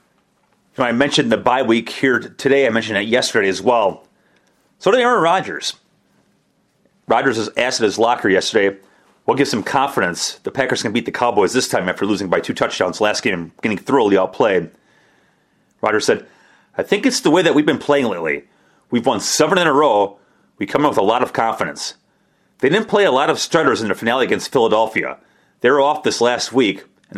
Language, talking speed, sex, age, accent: English, 205 wpm, male, 30-49, American